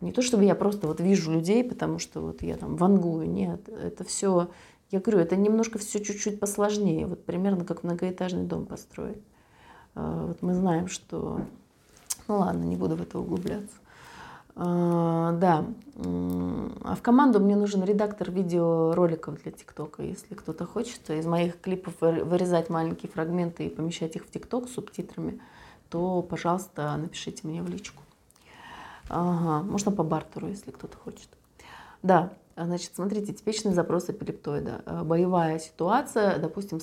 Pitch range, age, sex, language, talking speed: 165-205 Hz, 30-49, female, Russian, 145 wpm